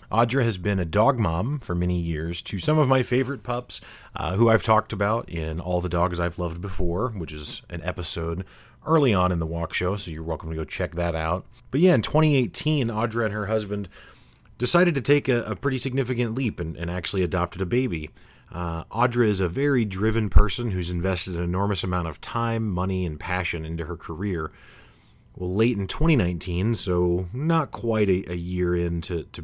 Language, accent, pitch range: English, American, 85-110 Hz